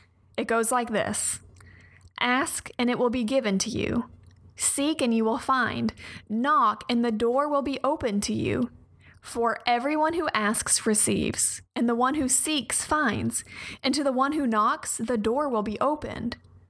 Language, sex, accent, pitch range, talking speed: English, female, American, 205-260 Hz, 175 wpm